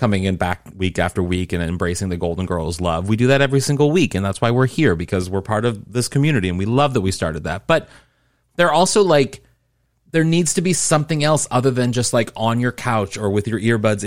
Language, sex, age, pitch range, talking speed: English, male, 30-49, 105-150 Hz, 245 wpm